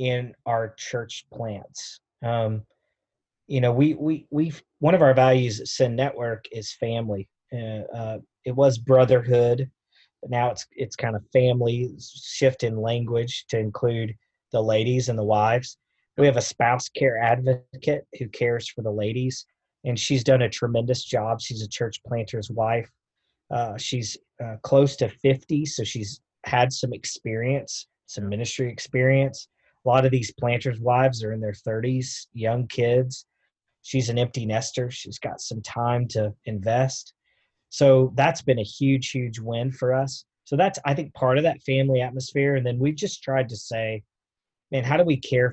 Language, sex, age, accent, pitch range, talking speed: English, male, 30-49, American, 115-130 Hz, 170 wpm